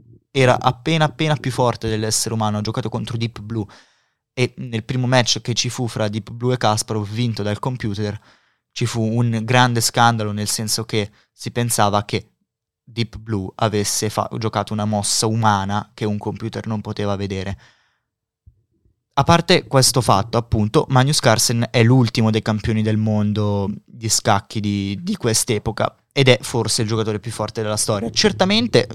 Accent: native